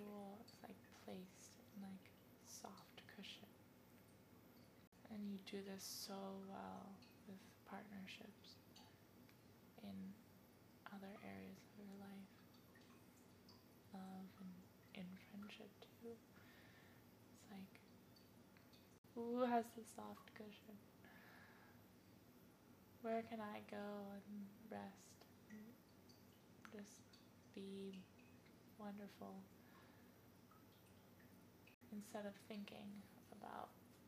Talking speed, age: 85 wpm, 10-29